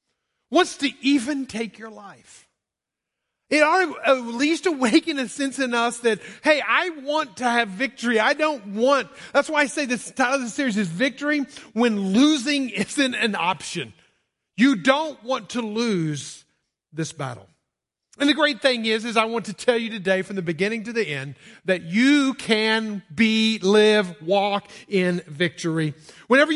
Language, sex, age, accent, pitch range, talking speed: English, male, 40-59, American, 195-265 Hz, 170 wpm